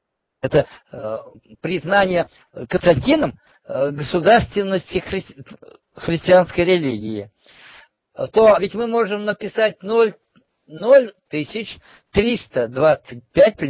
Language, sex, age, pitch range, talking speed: Russian, male, 50-69, 150-220 Hz, 65 wpm